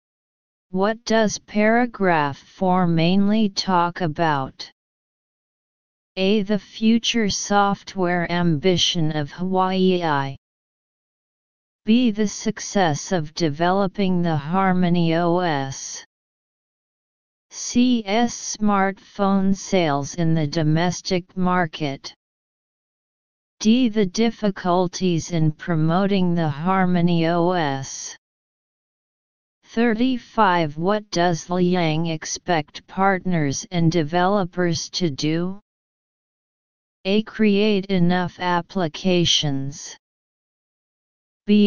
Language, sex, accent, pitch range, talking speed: English, female, American, 165-200 Hz, 75 wpm